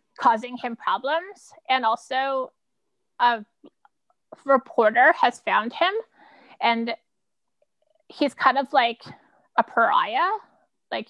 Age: 20-39